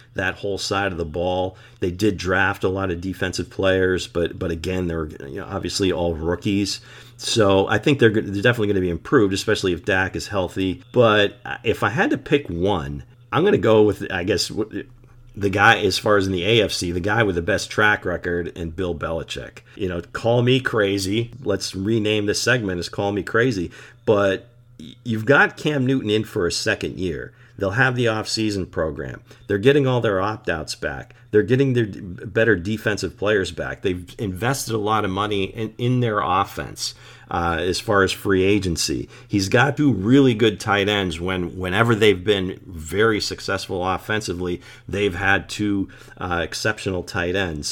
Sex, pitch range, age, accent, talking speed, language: male, 95-115 Hz, 40-59, American, 185 wpm, English